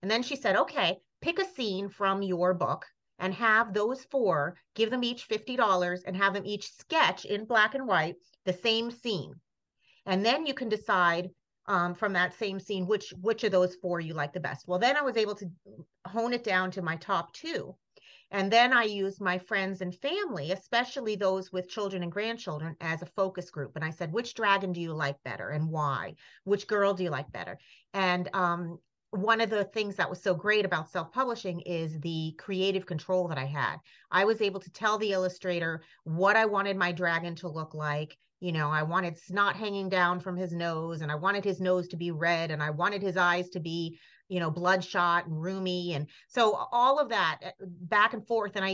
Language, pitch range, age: English, 170-205 Hz, 40-59